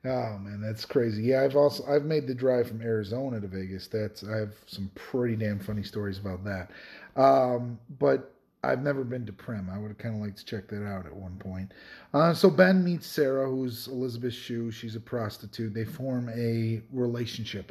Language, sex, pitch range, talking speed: English, male, 105-130 Hz, 200 wpm